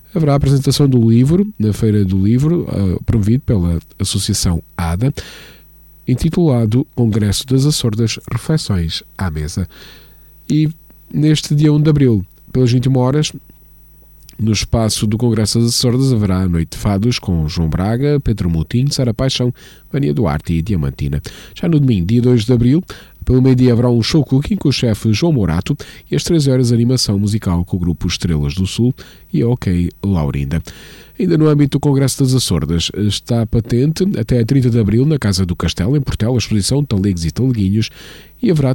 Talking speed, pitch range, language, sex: 170 wpm, 100-135 Hz, Portuguese, male